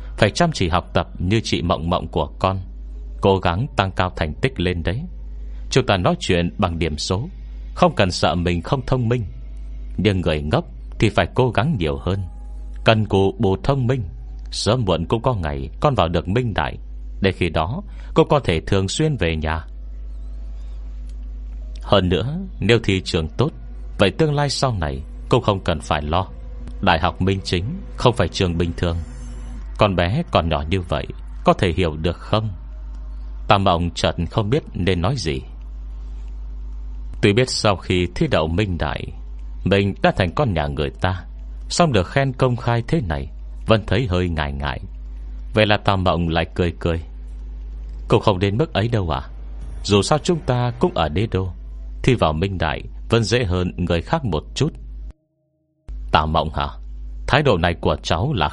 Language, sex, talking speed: Vietnamese, male, 185 wpm